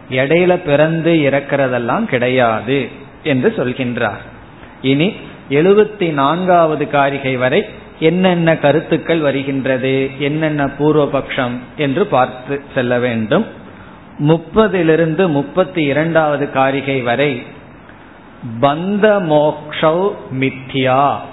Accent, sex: native, male